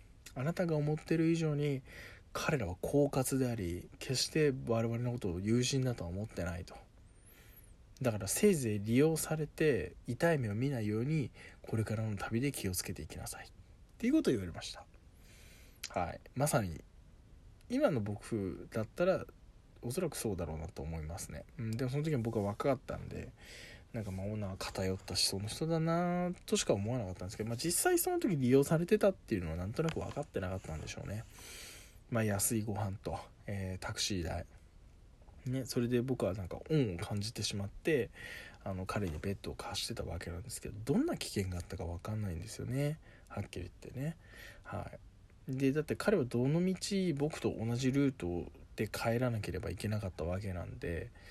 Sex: male